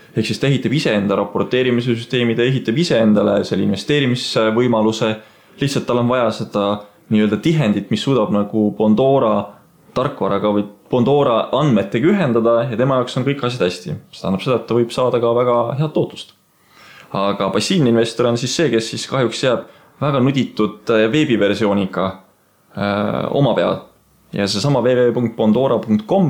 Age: 20-39